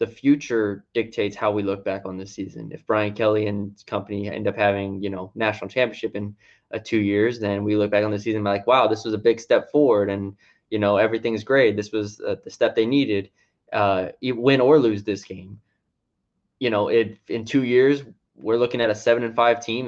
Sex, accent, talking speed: male, American, 225 wpm